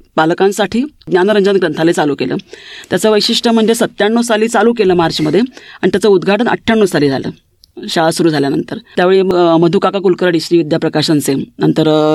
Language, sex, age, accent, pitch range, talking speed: Marathi, female, 30-49, native, 165-210 Hz, 140 wpm